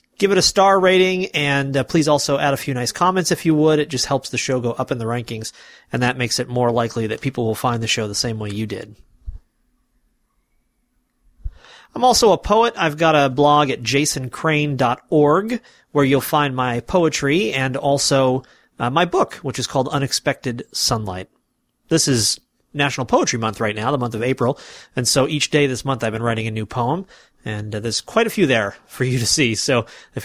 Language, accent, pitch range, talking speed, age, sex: English, American, 120-145 Hz, 210 wpm, 30-49, male